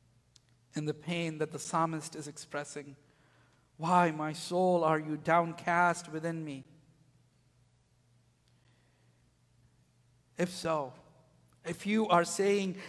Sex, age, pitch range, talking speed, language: male, 50-69, 145-180 Hz, 100 wpm, English